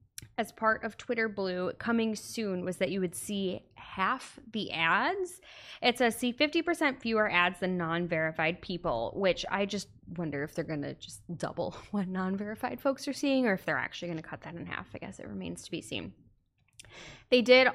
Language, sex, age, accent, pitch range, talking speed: English, female, 20-39, American, 170-225 Hz, 195 wpm